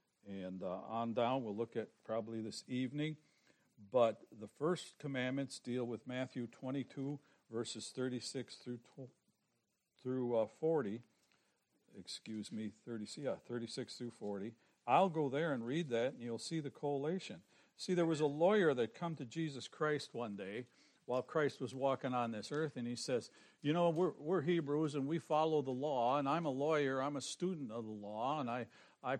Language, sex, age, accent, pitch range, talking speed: English, male, 60-79, American, 120-155 Hz, 175 wpm